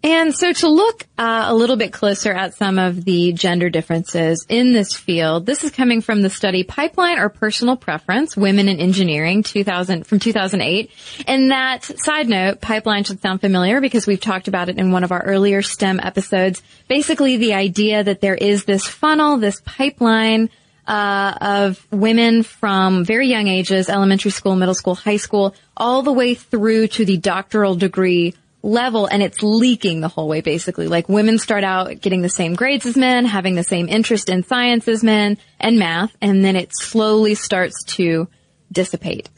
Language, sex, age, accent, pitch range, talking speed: English, female, 20-39, American, 185-235 Hz, 185 wpm